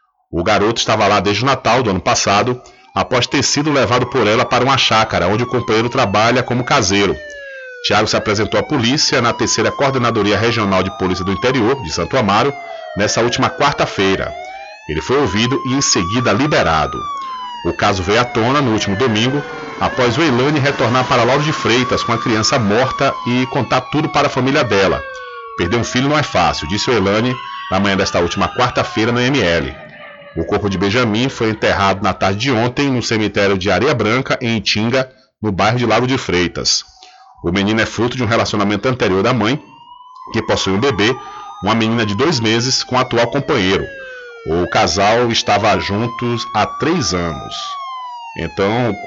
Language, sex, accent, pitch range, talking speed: Portuguese, male, Brazilian, 105-140 Hz, 180 wpm